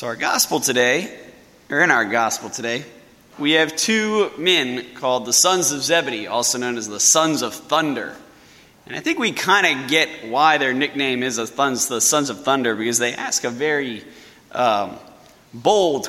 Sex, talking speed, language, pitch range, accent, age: male, 175 wpm, English, 135-205 Hz, American, 20-39